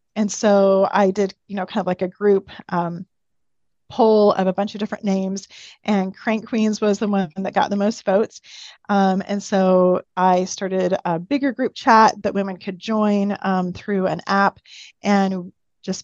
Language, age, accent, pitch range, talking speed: English, 30-49, American, 185-210 Hz, 185 wpm